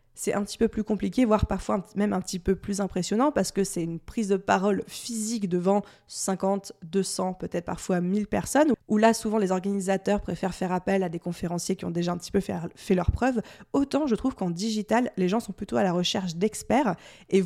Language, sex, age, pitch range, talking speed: French, female, 20-39, 190-240 Hz, 220 wpm